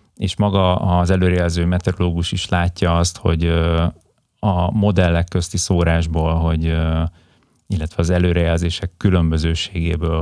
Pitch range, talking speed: 85-95 Hz, 105 wpm